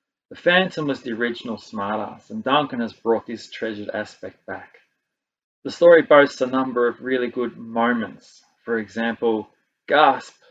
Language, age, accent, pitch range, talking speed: English, 30-49, Australian, 115-140 Hz, 150 wpm